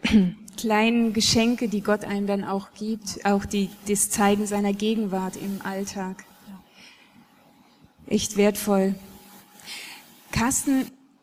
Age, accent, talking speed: 20-39, German, 95 wpm